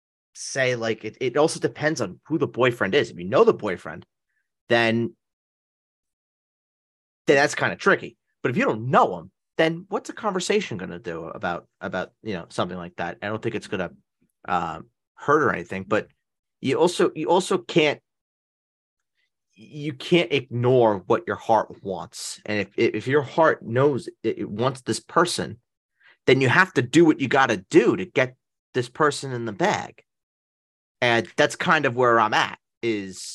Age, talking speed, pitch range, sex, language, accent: 30-49, 175 wpm, 105-145 Hz, male, English, American